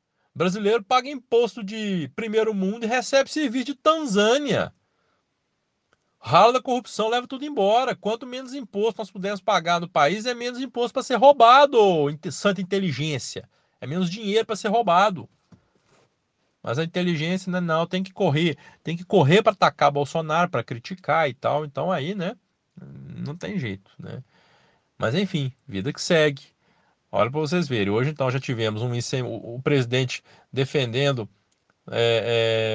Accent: Brazilian